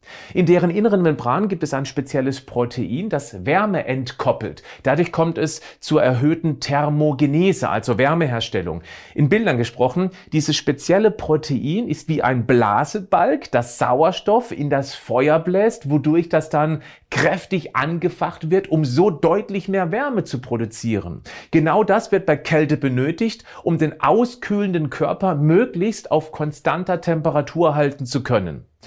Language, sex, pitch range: German, male, 135-180 Hz